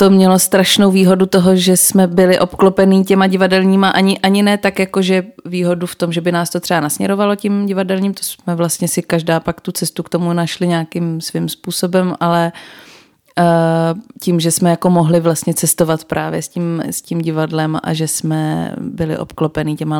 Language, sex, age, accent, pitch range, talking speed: Czech, female, 30-49, native, 160-175 Hz, 190 wpm